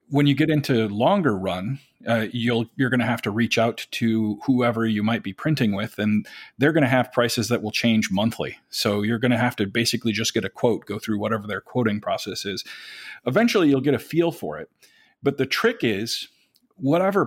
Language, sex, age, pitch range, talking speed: English, male, 40-59, 110-140 Hz, 215 wpm